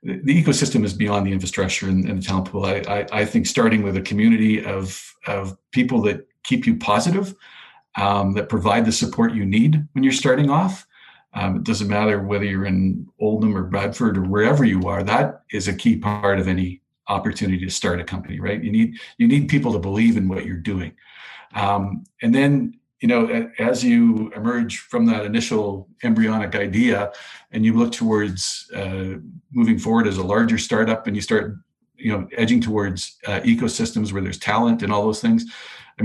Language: English